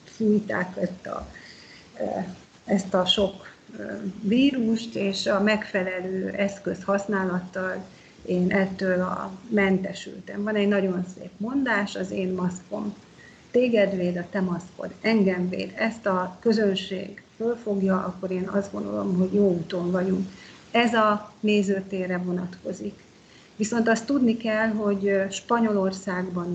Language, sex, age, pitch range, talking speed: Hungarian, female, 30-49, 185-215 Hz, 120 wpm